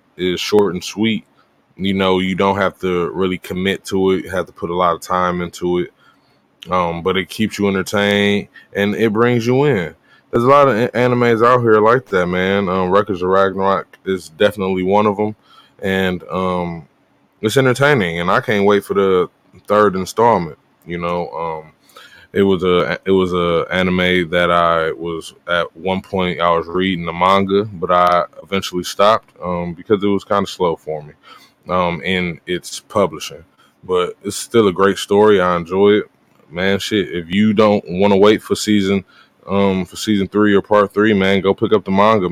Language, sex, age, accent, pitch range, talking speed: English, male, 20-39, American, 90-105 Hz, 195 wpm